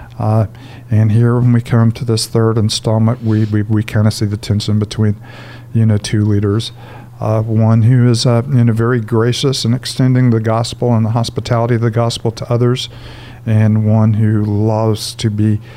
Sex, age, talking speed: male, 50-69, 200 wpm